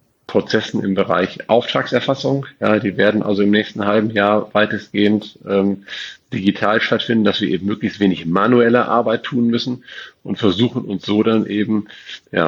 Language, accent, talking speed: German, German, 155 wpm